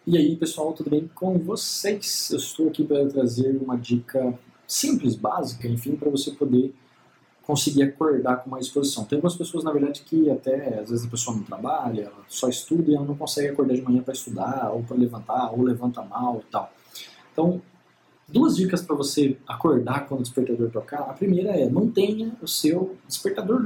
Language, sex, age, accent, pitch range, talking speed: Portuguese, male, 20-39, Brazilian, 125-160 Hz, 190 wpm